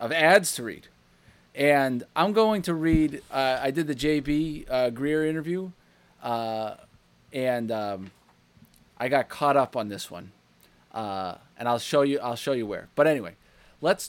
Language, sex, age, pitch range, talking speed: English, male, 30-49, 120-170 Hz, 165 wpm